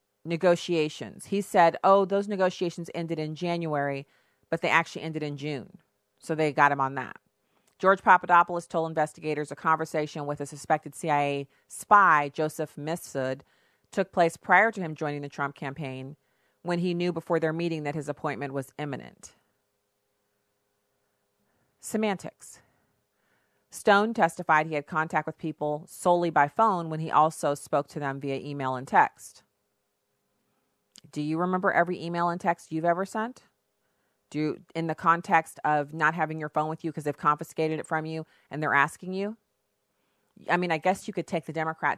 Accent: American